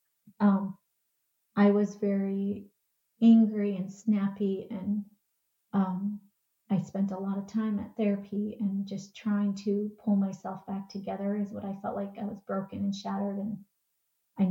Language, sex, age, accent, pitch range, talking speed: English, female, 30-49, American, 195-205 Hz, 155 wpm